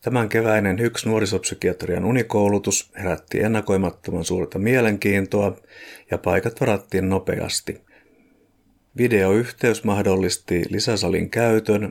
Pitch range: 95-110 Hz